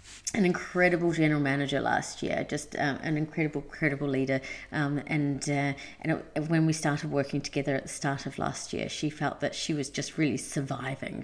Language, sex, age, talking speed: English, female, 30-49, 190 wpm